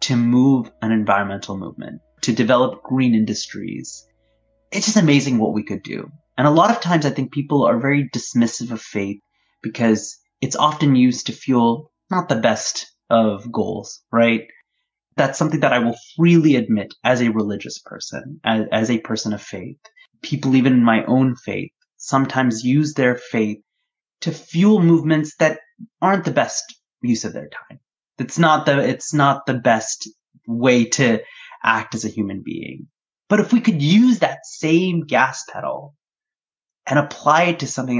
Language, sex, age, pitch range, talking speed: English, male, 30-49, 115-160 Hz, 170 wpm